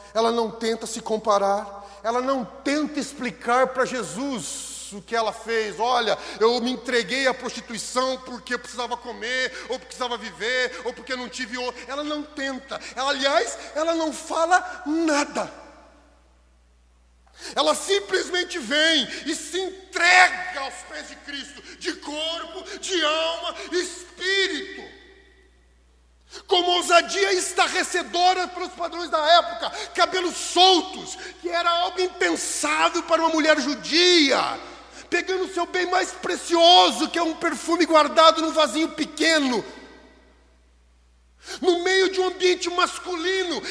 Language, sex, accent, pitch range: Portuguese, male, Brazilian, 255-355 Hz